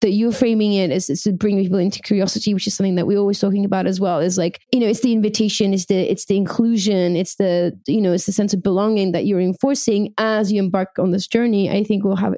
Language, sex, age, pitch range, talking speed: English, female, 20-39, 200-245 Hz, 265 wpm